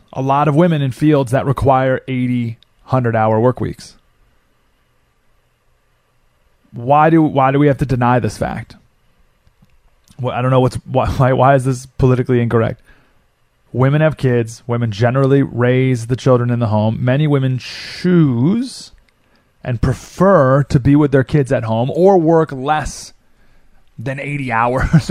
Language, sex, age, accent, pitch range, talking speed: English, male, 30-49, American, 120-145 Hz, 150 wpm